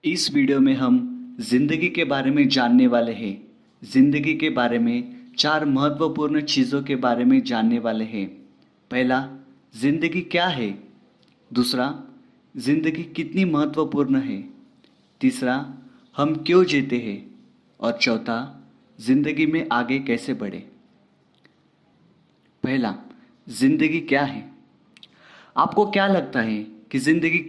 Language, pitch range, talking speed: Hindi, 140-185 Hz, 120 wpm